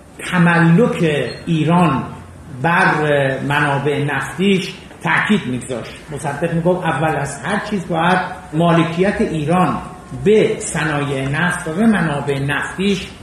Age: 50-69